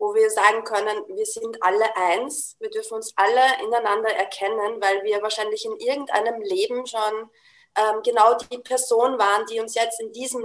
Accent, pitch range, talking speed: German, 215-335 Hz, 180 wpm